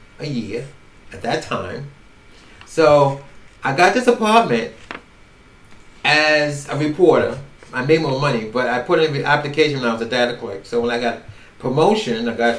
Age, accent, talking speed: 30-49, American, 175 wpm